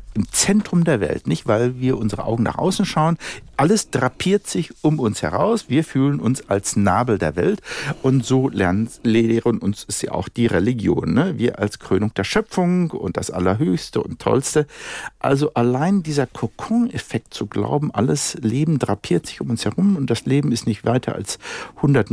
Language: German